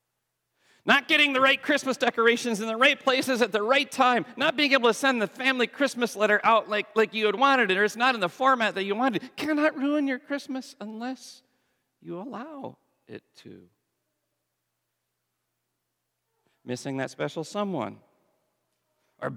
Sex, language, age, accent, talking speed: male, English, 40-59, American, 165 wpm